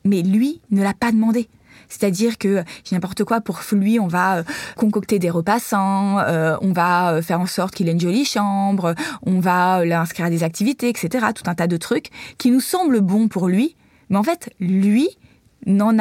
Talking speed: 190 wpm